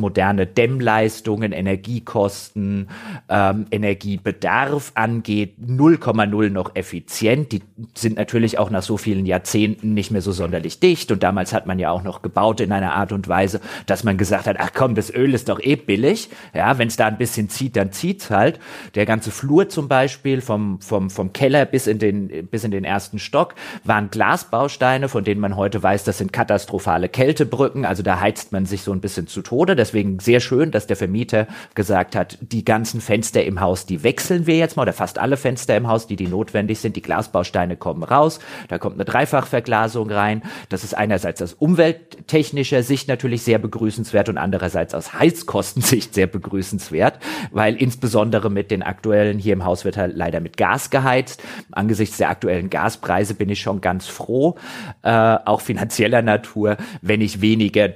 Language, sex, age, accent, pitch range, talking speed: German, male, 30-49, German, 100-120 Hz, 180 wpm